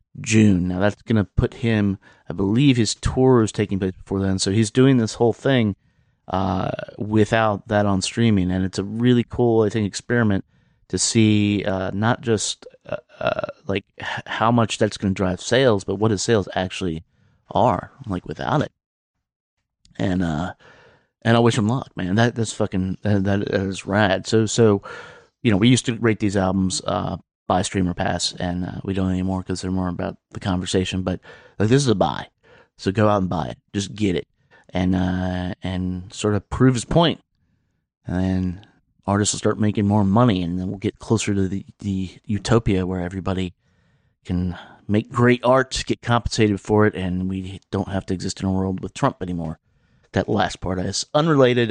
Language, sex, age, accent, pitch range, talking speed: English, male, 30-49, American, 95-115 Hz, 190 wpm